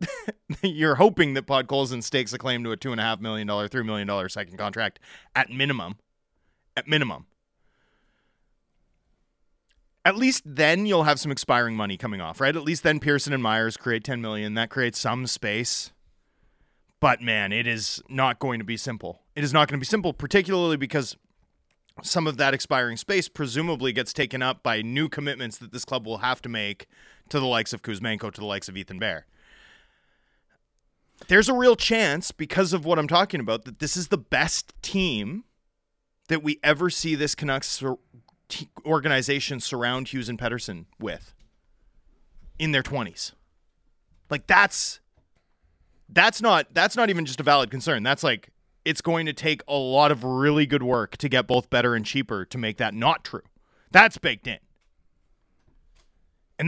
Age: 30-49